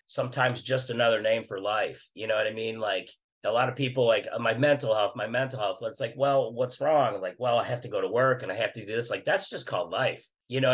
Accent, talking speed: American, 275 wpm